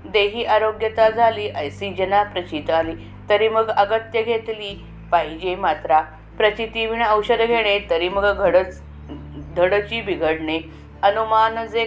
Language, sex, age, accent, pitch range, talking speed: Marathi, female, 30-49, native, 170-225 Hz, 110 wpm